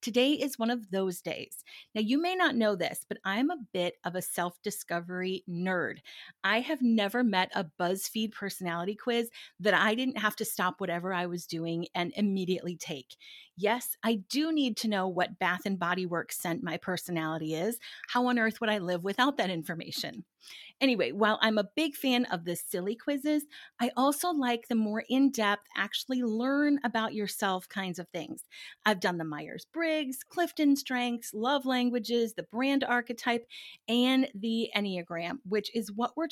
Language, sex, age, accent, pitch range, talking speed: English, female, 30-49, American, 185-245 Hz, 170 wpm